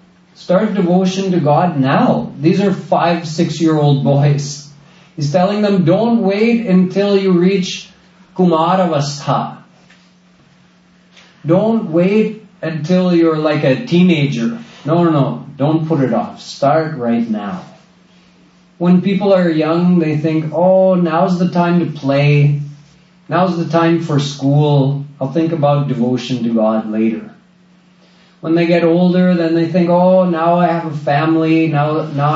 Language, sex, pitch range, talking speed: English, male, 145-180 Hz, 140 wpm